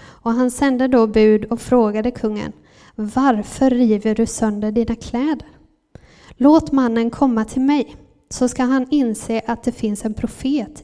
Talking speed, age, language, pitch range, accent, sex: 155 wpm, 10-29, Swedish, 225-250 Hz, native, female